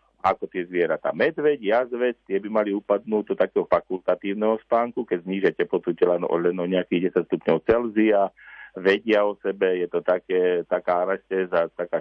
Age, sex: 50-69, male